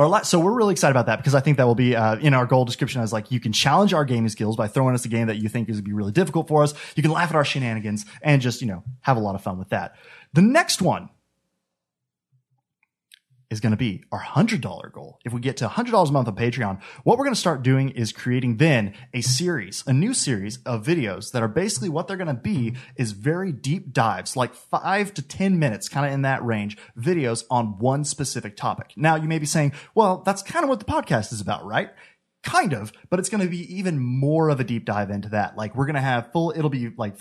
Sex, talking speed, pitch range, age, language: male, 255 wpm, 115-150 Hz, 20-39, English